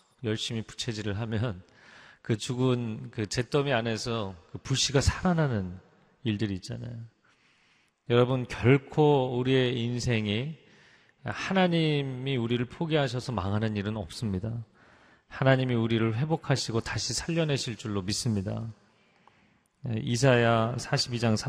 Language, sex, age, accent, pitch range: Korean, male, 30-49, native, 105-140 Hz